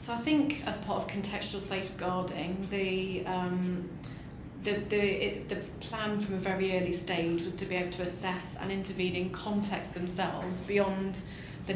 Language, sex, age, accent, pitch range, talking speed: English, female, 30-49, British, 180-210 Hz, 170 wpm